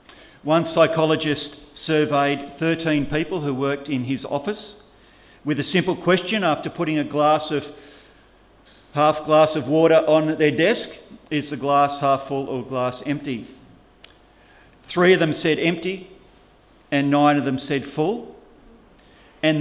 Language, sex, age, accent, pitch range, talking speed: English, male, 50-69, Australian, 125-155 Hz, 140 wpm